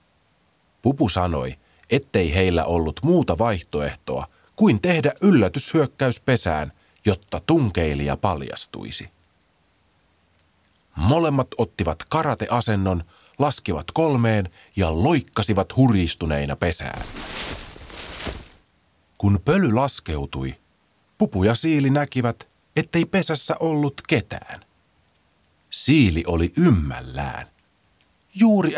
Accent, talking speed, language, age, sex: native, 80 wpm, Finnish, 30-49, male